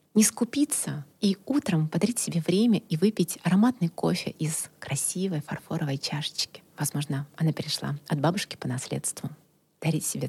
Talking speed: 140 wpm